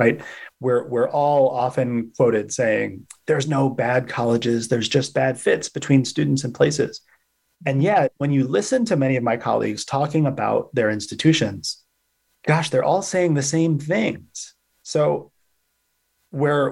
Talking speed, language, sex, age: 150 wpm, English, male, 30-49